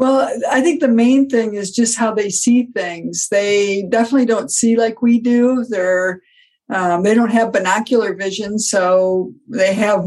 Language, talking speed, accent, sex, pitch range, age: English, 175 wpm, American, female, 205-250 Hz, 50-69